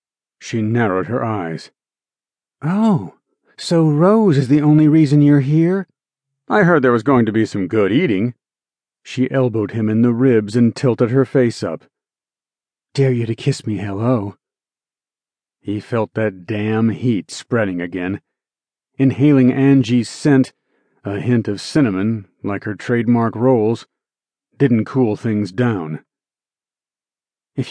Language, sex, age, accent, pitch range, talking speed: English, male, 40-59, American, 110-135 Hz, 135 wpm